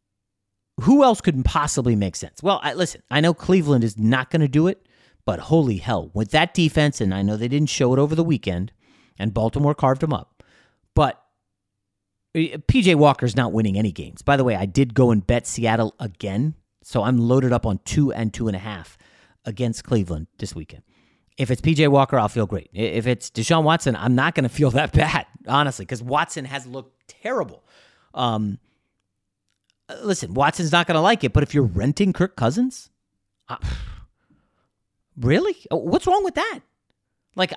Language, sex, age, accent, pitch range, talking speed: English, male, 30-49, American, 105-170 Hz, 185 wpm